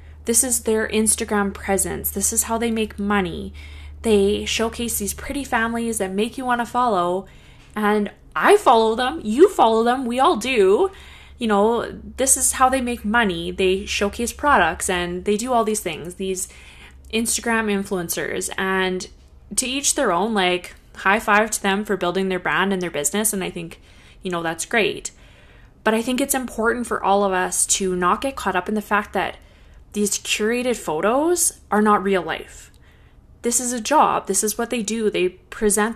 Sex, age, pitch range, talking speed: female, 20-39, 185-235 Hz, 185 wpm